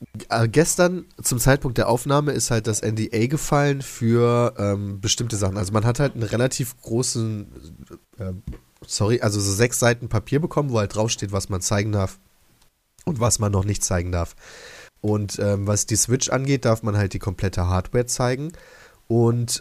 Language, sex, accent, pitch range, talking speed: German, male, German, 95-120 Hz, 175 wpm